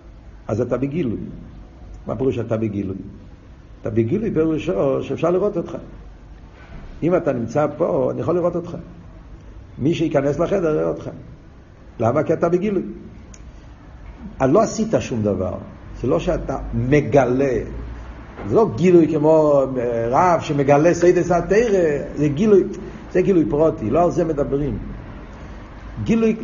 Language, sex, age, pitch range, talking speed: Hebrew, male, 50-69, 110-165 Hz, 130 wpm